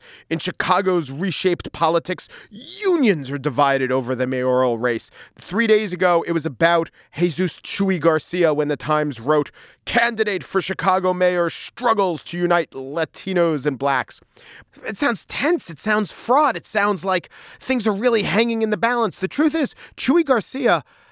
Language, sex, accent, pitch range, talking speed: English, male, American, 130-195 Hz, 155 wpm